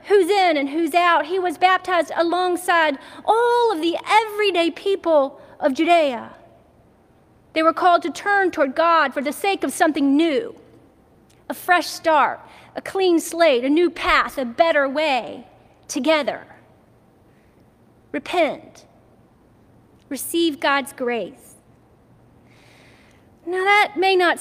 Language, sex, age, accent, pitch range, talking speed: English, female, 40-59, American, 310-385 Hz, 125 wpm